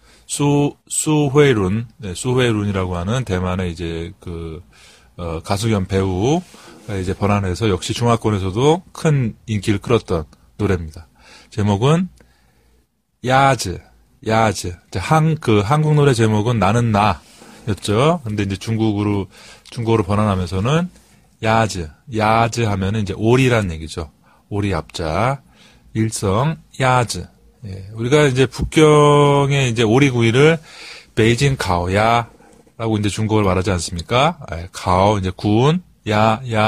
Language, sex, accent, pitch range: Korean, male, native, 90-120 Hz